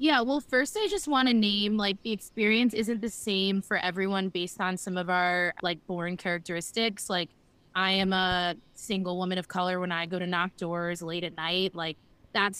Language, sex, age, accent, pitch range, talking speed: English, female, 20-39, American, 185-230 Hz, 205 wpm